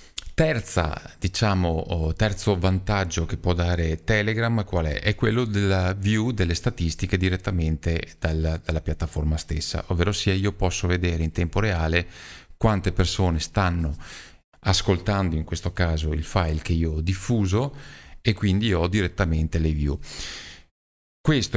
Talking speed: 130 wpm